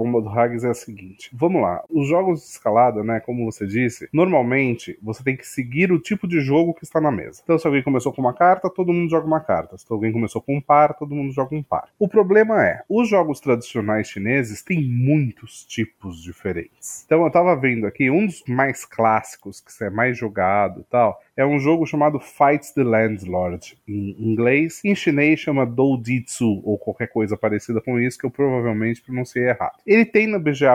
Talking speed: 210 wpm